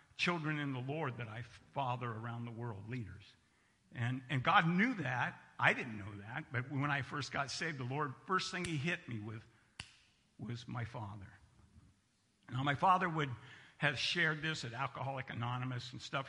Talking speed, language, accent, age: 180 wpm, English, American, 60-79